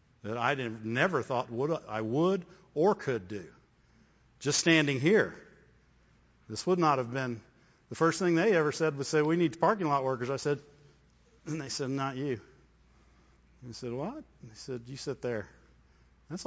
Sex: male